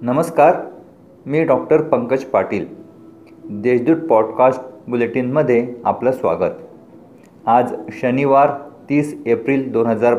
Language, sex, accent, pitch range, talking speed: Marathi, male, native, 120-145 Hz, 90 wpm